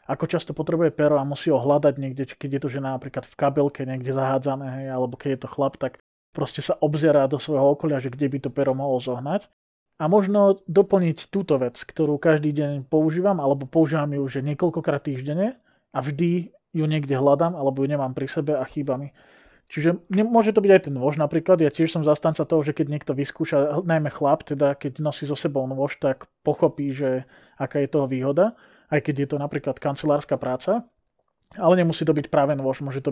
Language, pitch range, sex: Slovak, 140-160 Hz, male